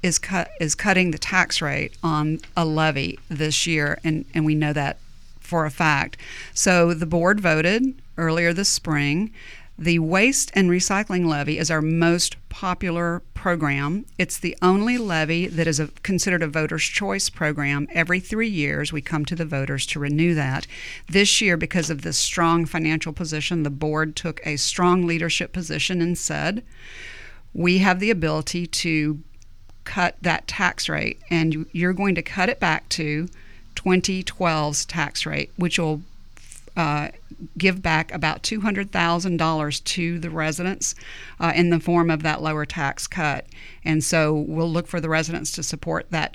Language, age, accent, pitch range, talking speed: English, 50-69, American, 155-175 Hz, 165 wpm